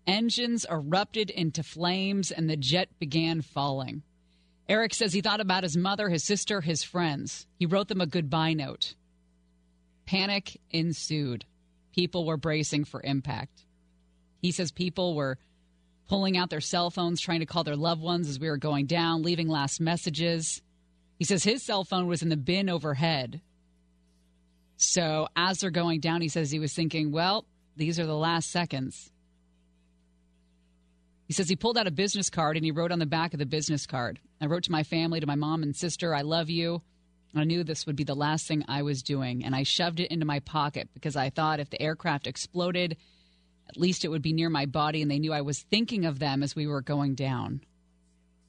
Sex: female